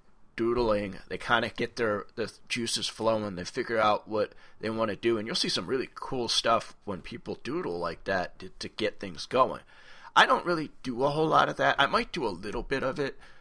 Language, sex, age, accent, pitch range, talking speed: English, male, 30-49, American, 100-120 Hz, 230 wpm